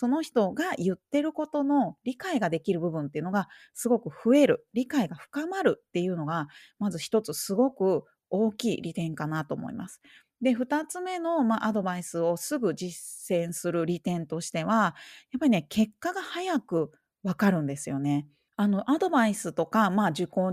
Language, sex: Japanese, female